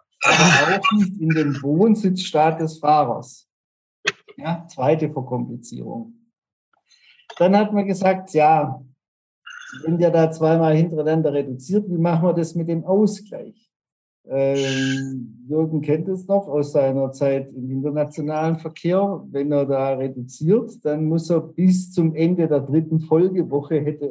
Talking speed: 130 wpm